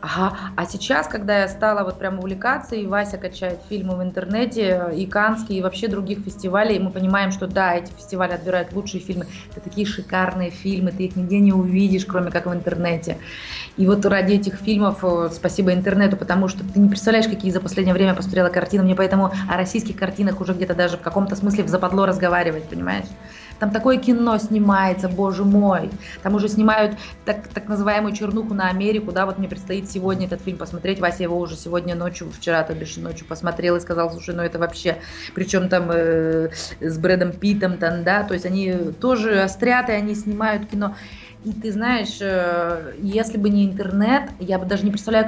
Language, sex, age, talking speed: Russian, female, 20-39, 190 wpm